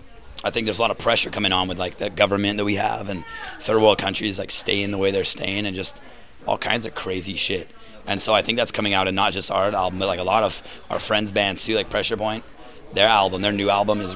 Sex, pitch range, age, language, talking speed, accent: male, 95-105 Hz, 30-49, English, 265 wpm, American